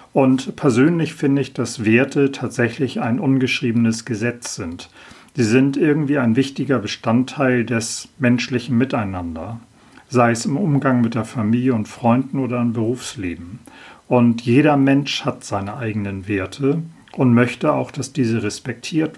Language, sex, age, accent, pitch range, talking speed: German, male, 40-59, German, 115-135 Hz, 140 wpm